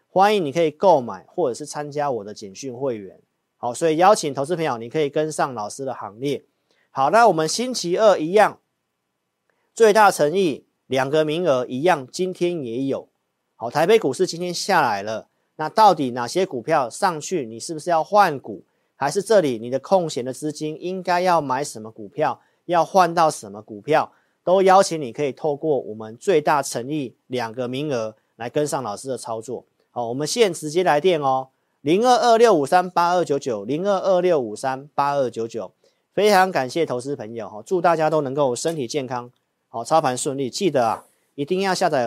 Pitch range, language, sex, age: 130-180 Hz, Chinese, male, 40-59